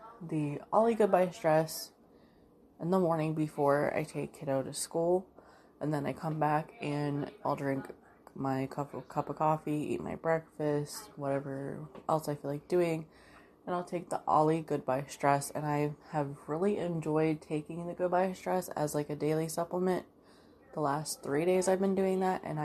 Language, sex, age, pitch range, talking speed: English, female, 20-39, 145-175 Hz, 175 wpm